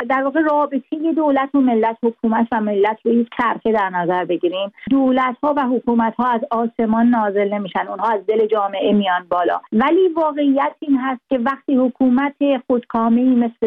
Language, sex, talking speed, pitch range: Persian, female, 165 wpm, 225-265 Hz